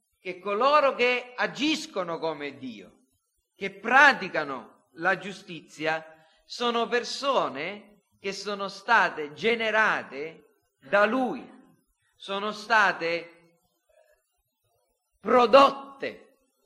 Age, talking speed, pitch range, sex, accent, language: 40-59, 75 wpm, 195-245 Hz, male, native, Italian